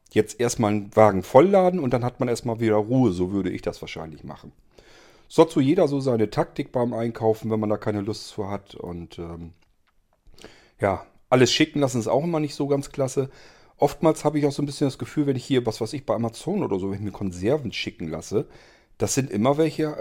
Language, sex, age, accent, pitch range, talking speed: German, male, 40-59, German, 105-140 Hz, 230 wpm